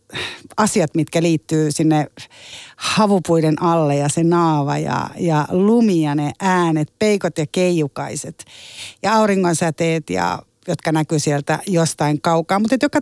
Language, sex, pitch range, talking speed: Finnish, female, 155-195 Hz, 130 wpm